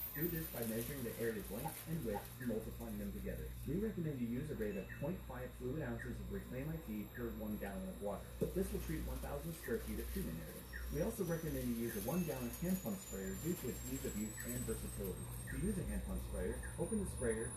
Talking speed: 230 wpm